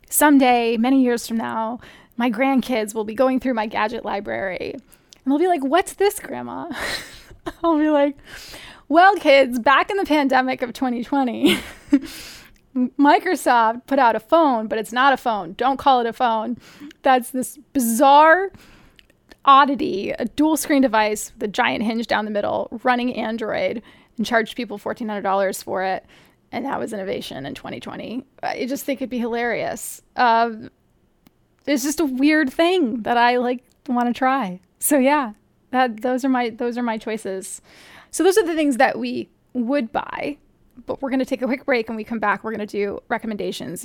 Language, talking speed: English, 175 wpm